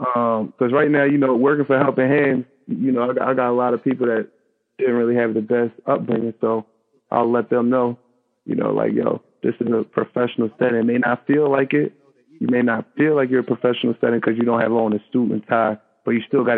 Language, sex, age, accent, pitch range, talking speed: English, male, 20-39, American, 115-130 Hz, 245 wpm